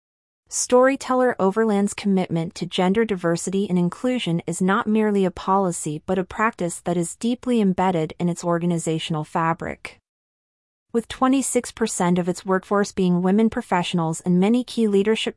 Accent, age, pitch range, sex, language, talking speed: American, 30-49, 170-205 Hz, female, English, 140 wpm